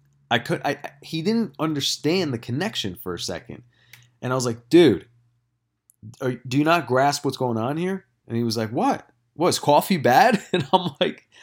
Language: English